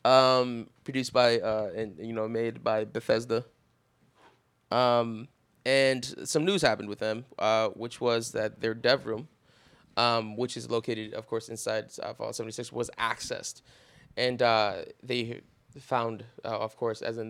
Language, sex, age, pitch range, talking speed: English, male, 20-39, 110-125 Hz, 155 wpm